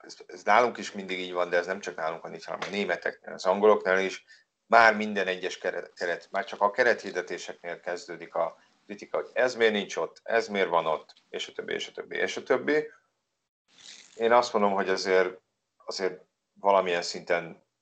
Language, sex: Hungarian, male